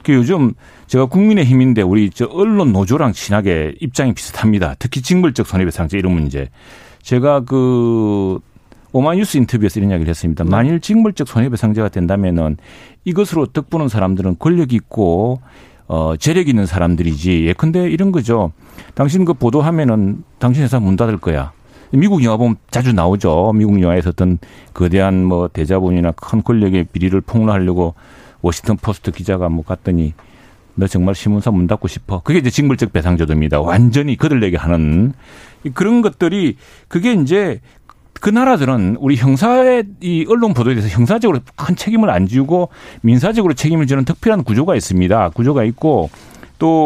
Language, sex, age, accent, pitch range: Korean, male, 40-59, native, 95-150 Hz